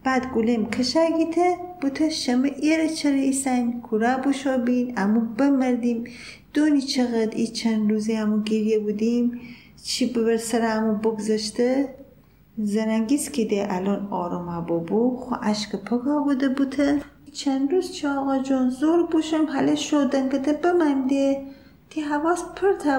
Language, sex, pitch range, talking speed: Persian, female, 220-305 Hz, 130 wpm